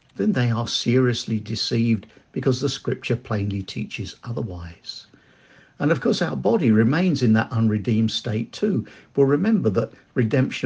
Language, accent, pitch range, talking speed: English, British, 110-135 Hz, 145 wpm